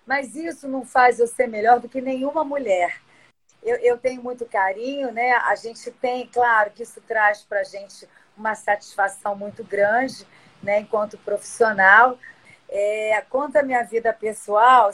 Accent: Brazilian